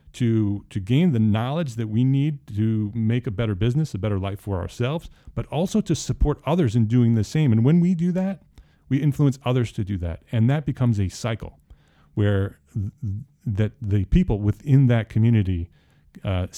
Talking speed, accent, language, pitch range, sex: 190 wpm, American, English, 100-135 Hz, male